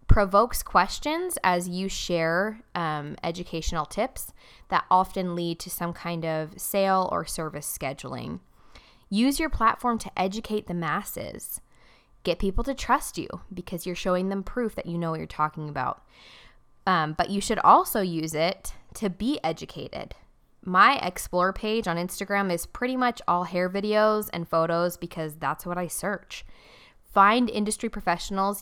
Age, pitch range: 20-39, 170-210 Hz